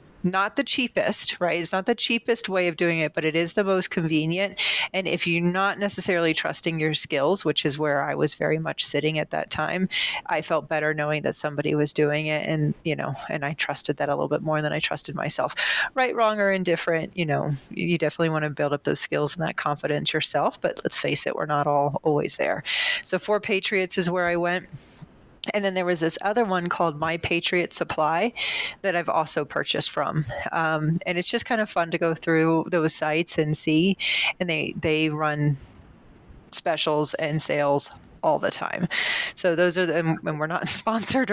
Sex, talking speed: female, 210 wpm